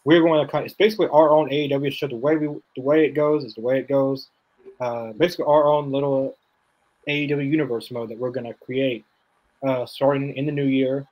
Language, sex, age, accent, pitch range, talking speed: English, male, 20-39, American, 120-145 Hz, 220 wpm